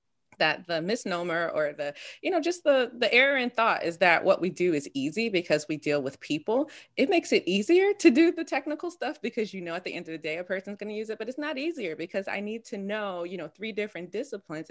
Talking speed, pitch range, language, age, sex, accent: 255 wpm, 160-220 Hz, English, 20-39, female, American